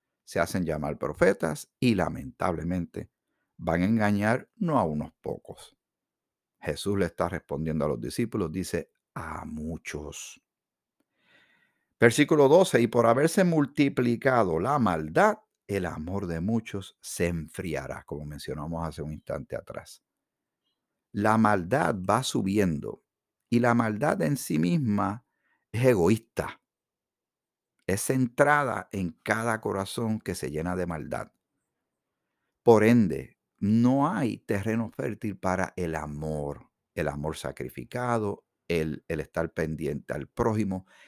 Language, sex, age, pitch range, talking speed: Spanish, male, 50-69, 80-120 Hz, 120 wpm